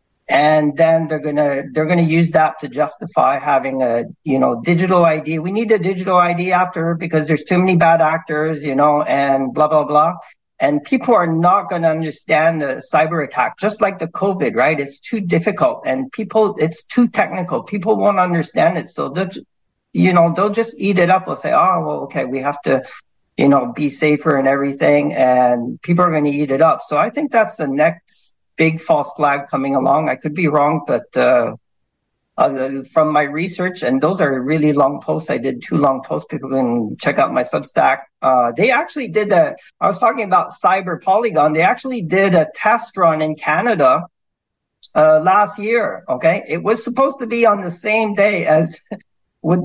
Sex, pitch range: male, 150-195 Hz